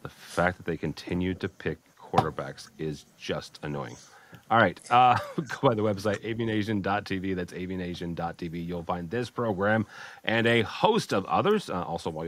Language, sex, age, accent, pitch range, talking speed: English, male, 40-59, American, 80-100 Hz, 160 wpm